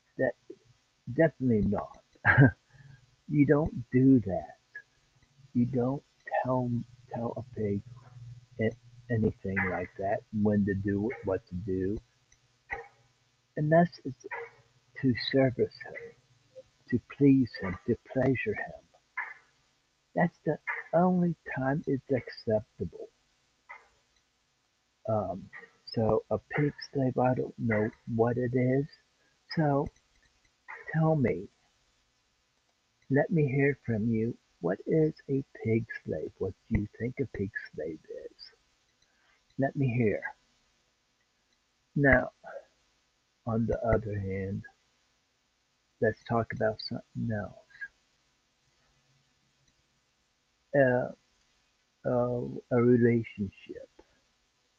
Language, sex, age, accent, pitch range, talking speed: English, male, 60-79, American, 110-135 Hz, 95 wpm